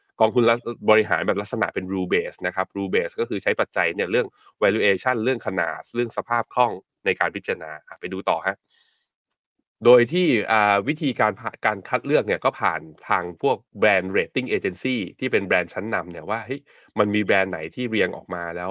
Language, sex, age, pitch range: Thai, male, 20-39, 95-120 Hz